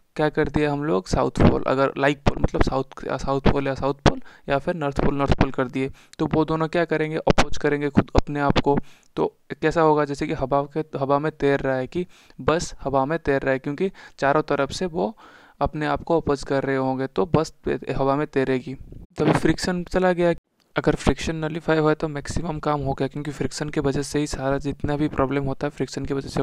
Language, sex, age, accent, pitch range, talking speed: Hindi, male, 20-39, native, 135-150 Hz, 230 wpm